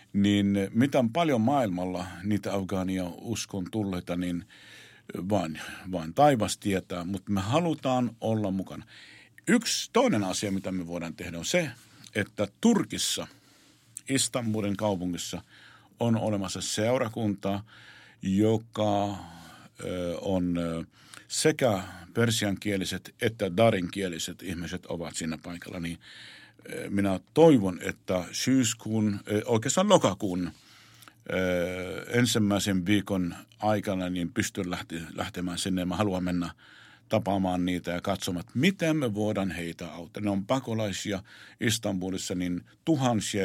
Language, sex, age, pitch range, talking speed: Finnish, male, 50-69, 90-110 Hz, 105 wpm